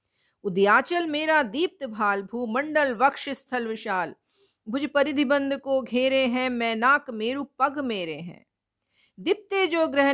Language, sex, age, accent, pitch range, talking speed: Hindi, female, 50-69, native, 235-290 Hz, 130 wpm